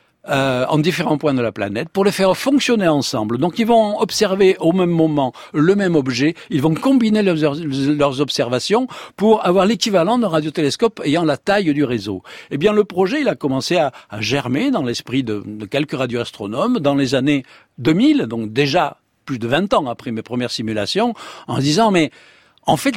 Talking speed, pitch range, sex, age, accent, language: 190 wpm, 125-200 Hz, male, 60-79, French, French